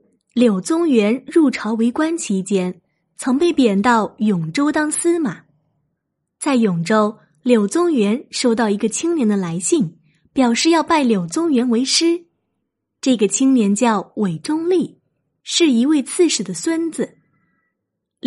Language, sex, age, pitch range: Chinese, female, 20-39, 195-285 Hz